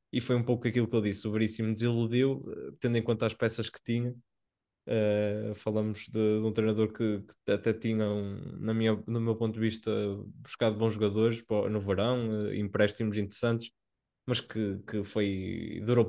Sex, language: male, Portuguese